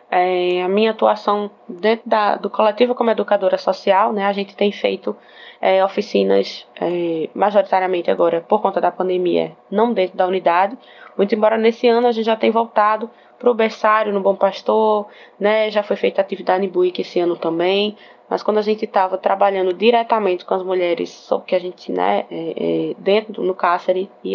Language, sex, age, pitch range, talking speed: Portuguese, female, 20-39, 180-215 Hz, 185 wpm